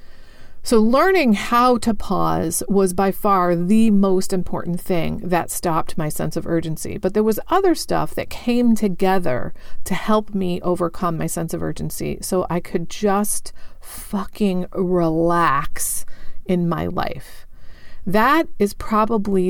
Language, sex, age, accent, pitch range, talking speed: English, female, 40-59, American, 170-210 Hz, 140 wpm